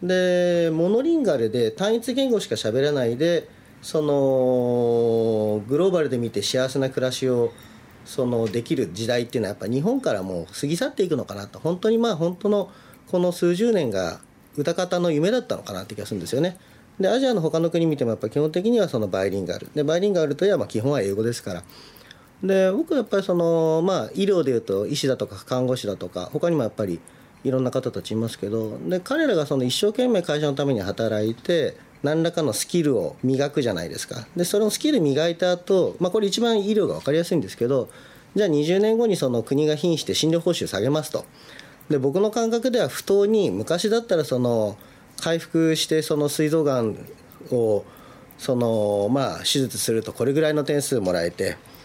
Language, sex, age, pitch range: Japanese, male, 40-59, 120-185 Hz